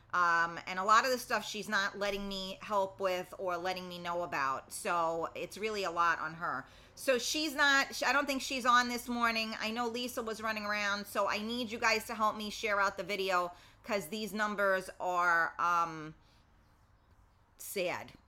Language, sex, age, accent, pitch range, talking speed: English, female, 30-49, American, 155-225 Hz, 195 wpm